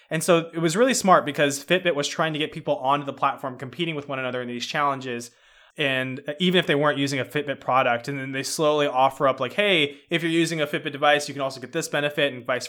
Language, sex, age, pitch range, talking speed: English, male, 20-39, 130-165 Hz, 255 wpm